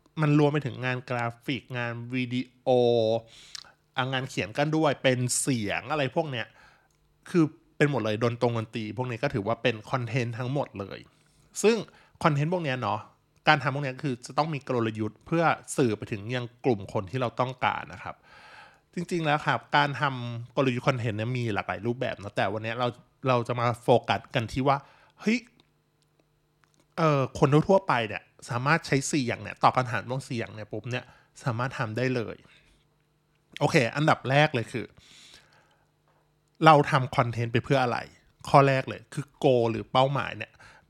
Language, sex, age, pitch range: Thai, male, 20-39, 120-150 Hz